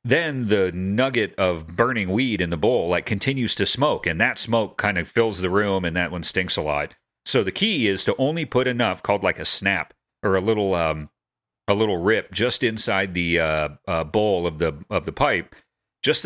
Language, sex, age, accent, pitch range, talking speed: English, male, 40-59, American, 85-110 Hz, 215 wpm